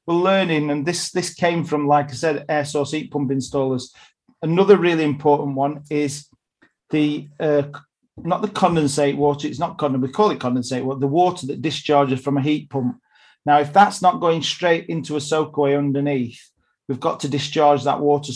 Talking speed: 190 wpm